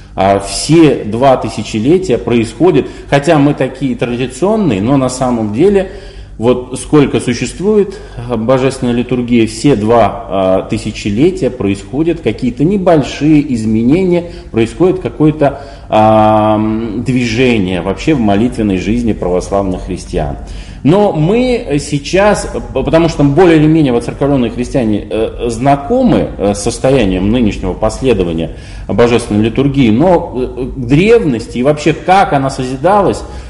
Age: 20-39